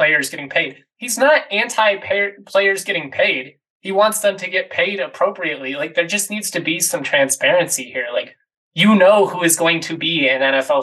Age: 20-39